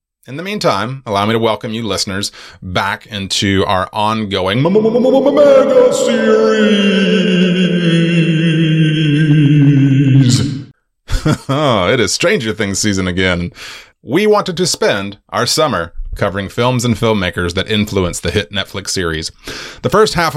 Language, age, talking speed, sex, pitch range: English, 30-49, 120 wpm, male, 100-145 Hz